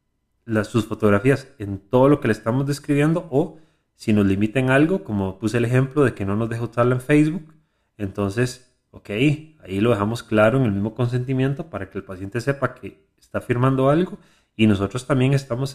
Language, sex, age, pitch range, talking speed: Spanish, male, 30-49, 100-135 Hz, 185 wpm